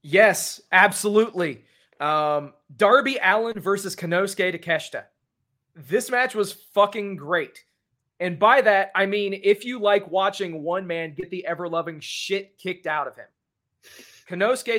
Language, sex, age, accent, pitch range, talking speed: English, male, 30-49, American, 165-220 Hz, 135 wpm